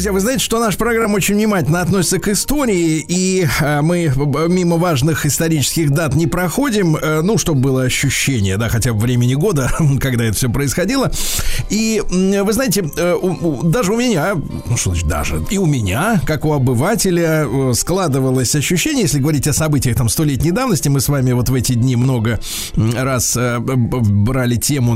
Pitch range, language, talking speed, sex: 125-190 Hz, Russian, 165 wpm, male